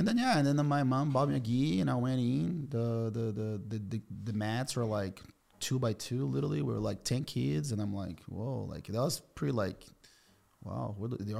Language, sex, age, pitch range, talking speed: English, male, 30-49, 105-130 Hz, 230 wpm